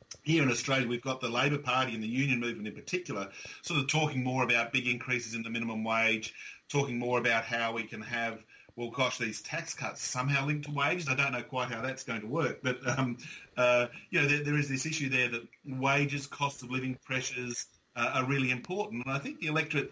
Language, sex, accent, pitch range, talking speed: English, male, Australian, 115-135 Hz, 230 wpm